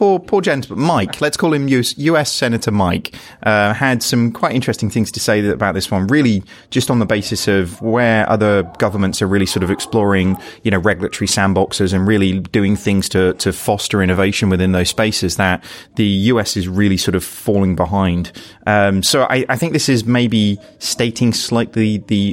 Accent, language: British, English